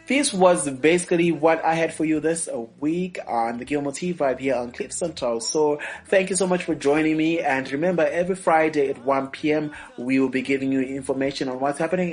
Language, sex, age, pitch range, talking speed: English, male, 30-49, 125-170 Hz, 210 wpm